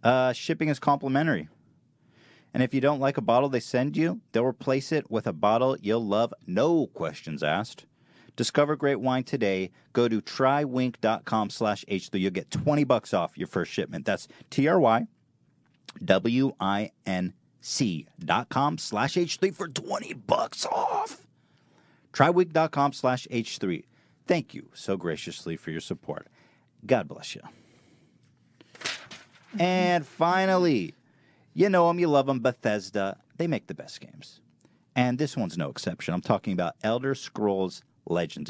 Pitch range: 115-150 Hz